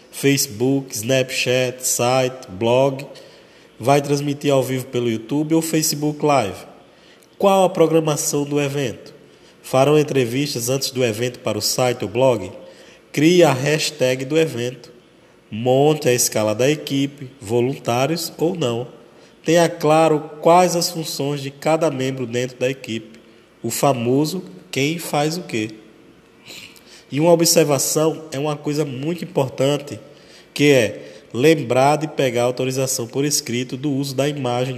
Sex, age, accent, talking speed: male, 20-39, Brazilian, 135 wpm